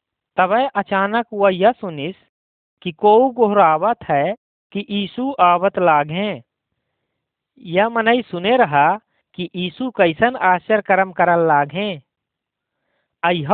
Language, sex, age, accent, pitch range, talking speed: Hindi, male, 50-69, native, 165-220 Hz, 105 wpm